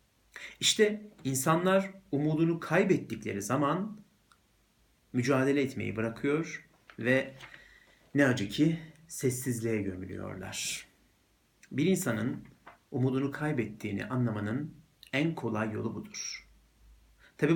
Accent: native